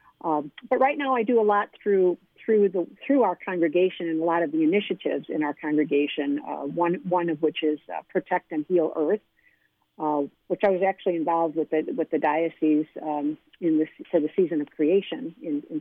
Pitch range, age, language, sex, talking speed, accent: 160-210 Hz, 50-69, English, female, 210 wpm, American